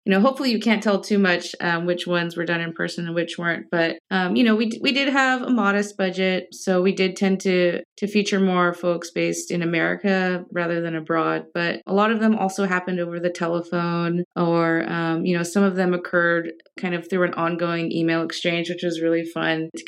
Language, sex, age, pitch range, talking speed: English, female, 20-39, 165-185 Hz, 225 wpm